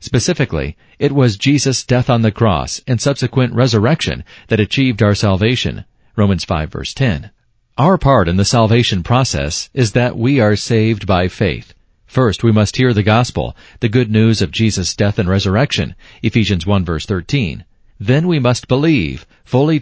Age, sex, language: 40-59, male, English